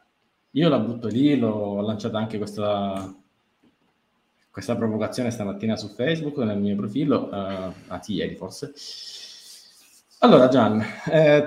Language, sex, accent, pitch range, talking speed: Italian, male, native, 110-150 Hz, 115 wpm